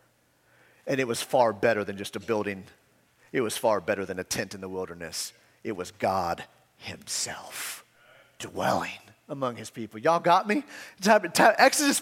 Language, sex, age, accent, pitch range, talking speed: English, male, 30-49, American, 190-275 Hz, 155 wpm